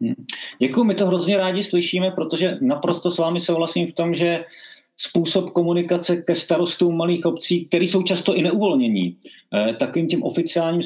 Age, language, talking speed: 30-49, Czech, 155 wpm